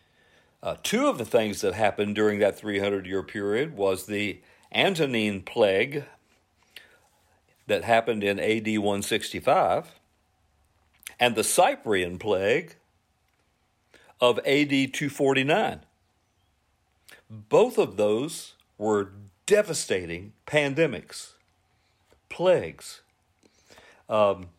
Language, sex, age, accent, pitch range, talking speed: English, male, 50-69, American, 95-155 Hz, 85 wpm